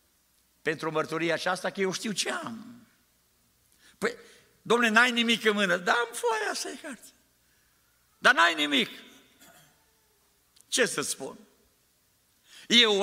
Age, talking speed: 60-79, 120 wpm